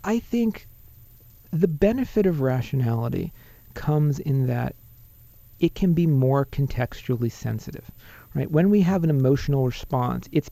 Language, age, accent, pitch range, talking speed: English, 40-59, American, 115-145 Hz, 130 wpm